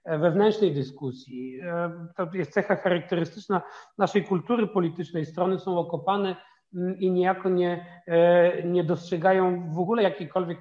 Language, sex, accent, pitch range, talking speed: Polish, male, native, 170-200 Hz, 115 wpm